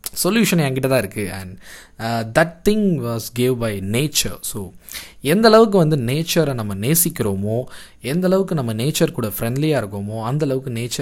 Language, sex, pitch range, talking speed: Tamil, male, 110-155 Hz, 150 wpm